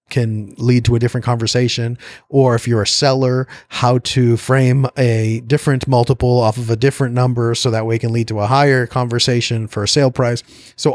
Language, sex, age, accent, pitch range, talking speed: English, male, 30-49, American, 110-125 Hz, 205 wpm